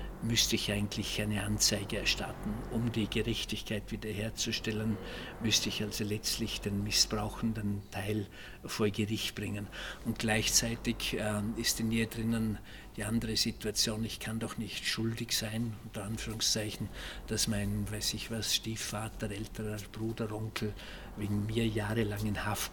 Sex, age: male, 50-69